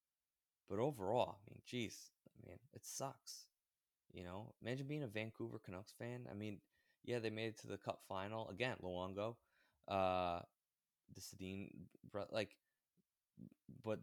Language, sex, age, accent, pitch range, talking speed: English, male, 20-39, American, 90-105 Hz, 145 wpm